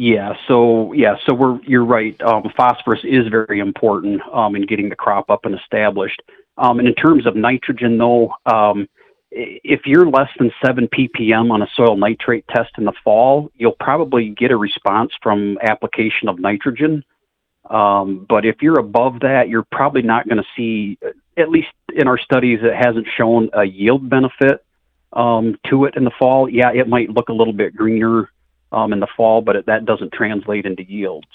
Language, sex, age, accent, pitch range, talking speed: English, male, 40-59, American, 105-125 Hz, 190 wpm